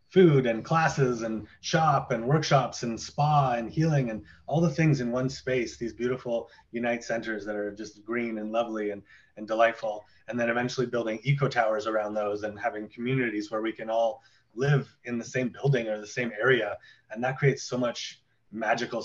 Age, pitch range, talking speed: 30-49, 110-125 Hz, 190 wpm